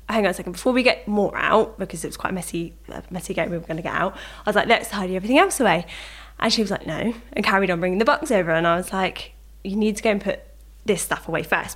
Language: English